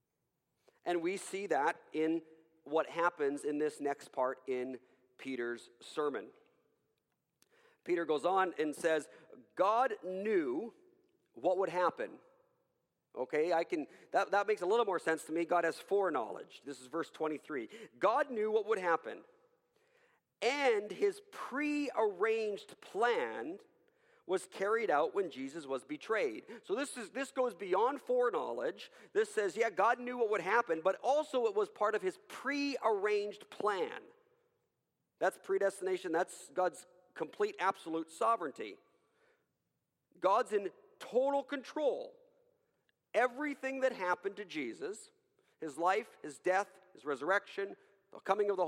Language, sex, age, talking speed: English, male, 40-59, 135 wpm